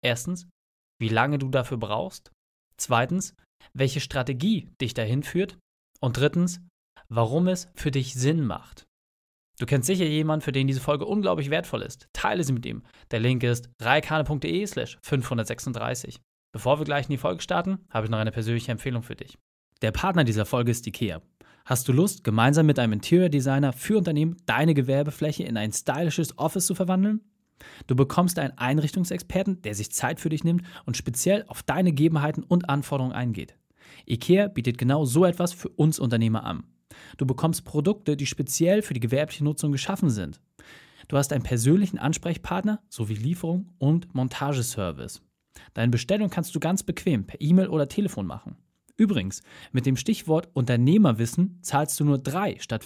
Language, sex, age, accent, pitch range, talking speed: German, male, 30-49, German, 125-175 Hz, 165 wpm